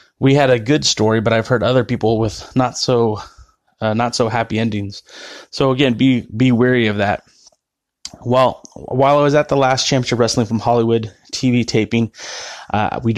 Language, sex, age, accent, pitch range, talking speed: English, male, 20-39, American, 115-135 Hz, 180 wpm